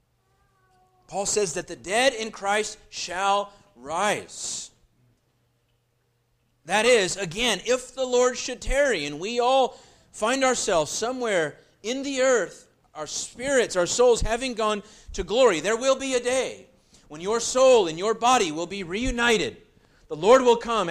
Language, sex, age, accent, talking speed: English, male, 40-59, American, 150 wpm